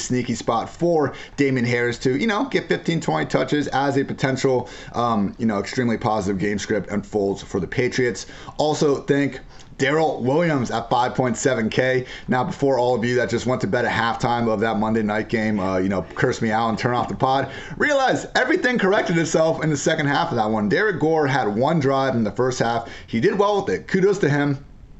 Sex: male